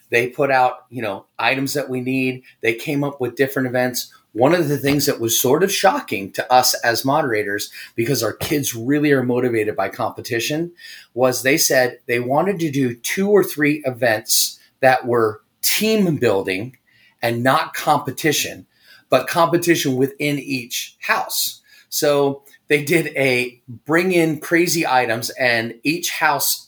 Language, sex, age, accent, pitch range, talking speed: English, male, 30-49, American, 120-145 Hz, 155 wpm